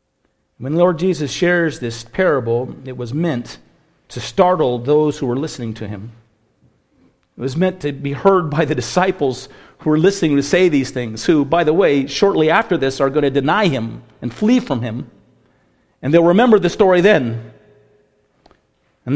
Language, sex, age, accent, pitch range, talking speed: English, male, 50-69, American, 130-190 Hz, 175 wpm